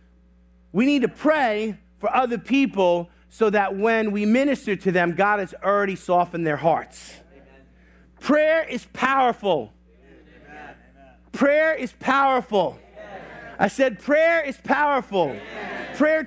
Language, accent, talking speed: English, American, 120 wpm